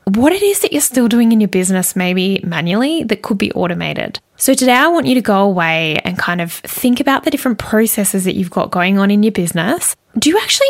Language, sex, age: English, female, 10-29